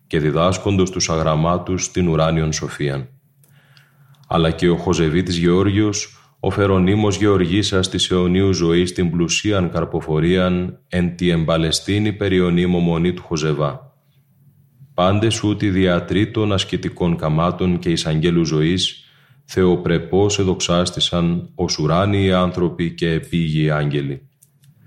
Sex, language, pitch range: male, Greek, 85-105 Hz